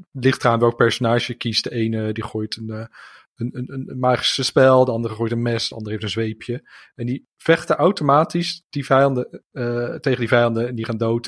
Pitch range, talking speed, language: 120-155 Hz, 205 wpm, Dutch